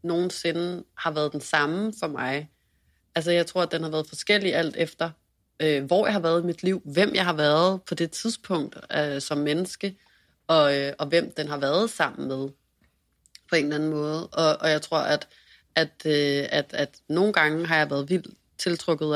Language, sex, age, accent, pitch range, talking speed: Danish, female, 30-49, native, 150-175 Hz, 205 wpm